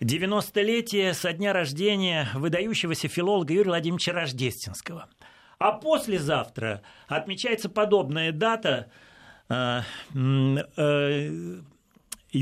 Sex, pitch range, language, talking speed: male, 145-220 Hz, Russian, 75 wpm